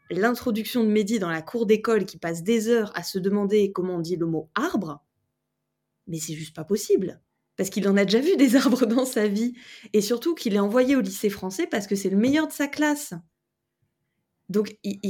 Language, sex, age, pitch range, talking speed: French, female, 20-39, 190-250 Hz, 215 wpm